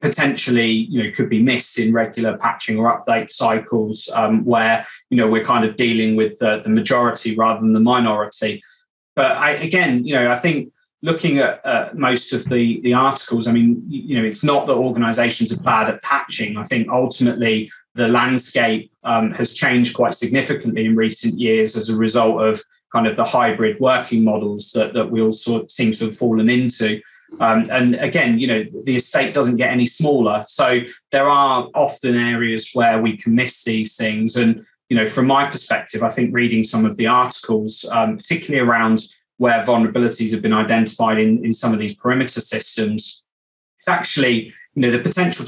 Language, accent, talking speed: English, British, 190 wpm